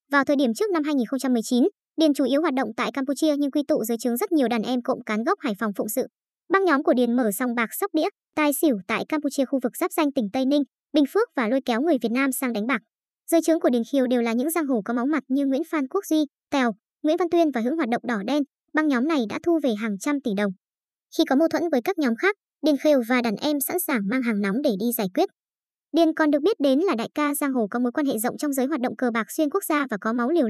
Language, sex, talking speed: Vietnamese, male, 290 wpm